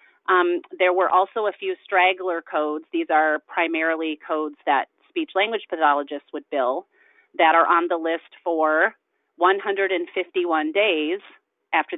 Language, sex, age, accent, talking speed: English, female, 30-49, American, 130 wpm